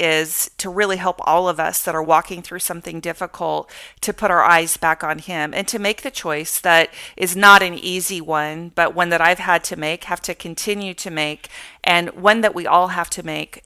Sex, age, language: female, 40-59, English